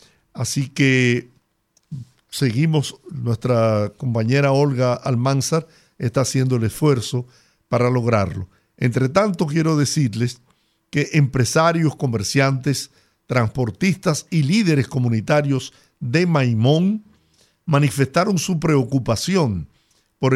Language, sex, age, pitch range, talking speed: Spanish, male, 50-69, 125-160 Hz, 90 wpm